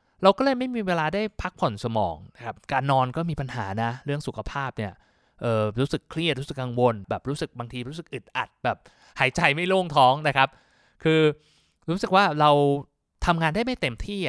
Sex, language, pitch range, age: male, Thai, 130-175 Hz, 20-39